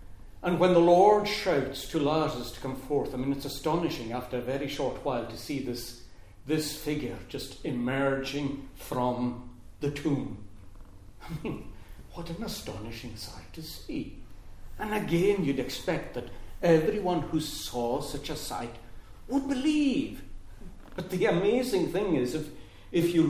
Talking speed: 150 wpm